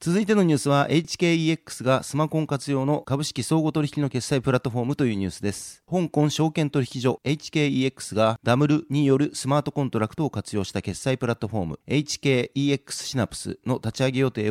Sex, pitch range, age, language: male, 115-145 Hz, 40-59, Japanese